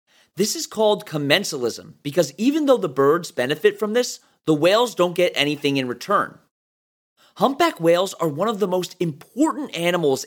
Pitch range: 150-220 Hz